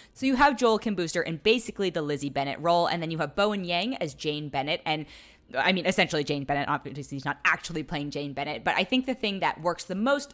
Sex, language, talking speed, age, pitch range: female, English, 245 wpm, 20-39, 145-215 Hz